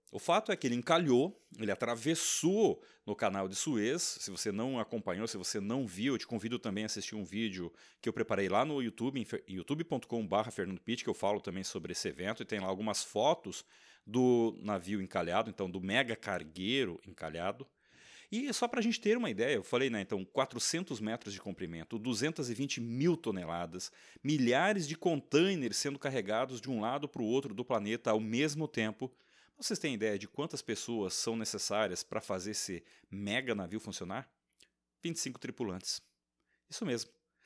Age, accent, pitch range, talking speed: 30-49, Brazilian, 105-140 Hz, 175 wpm